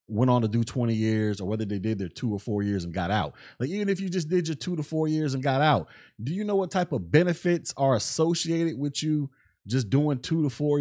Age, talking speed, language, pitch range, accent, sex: 30-49, 265 wpm, English, 135-170 Hz, American, male